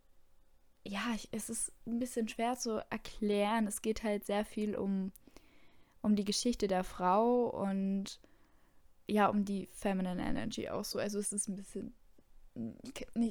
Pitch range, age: 195-220 Hz, 10-29